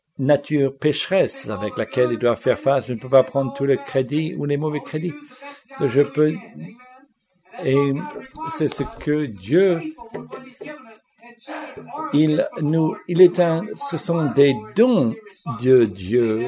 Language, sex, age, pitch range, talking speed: English, male, 60-79, 130-185 Hz, 140 wpm